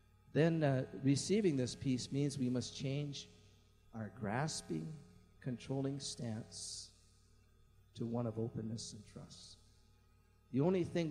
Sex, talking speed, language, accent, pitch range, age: male, 120 wpm, English, American, 105-130 Hz, 50-69